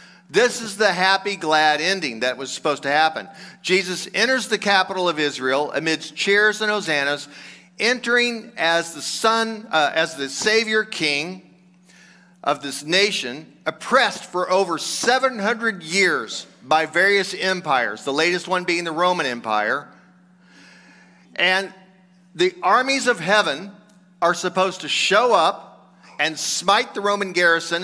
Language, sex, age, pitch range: English, male, 50-69, 165-205 Hz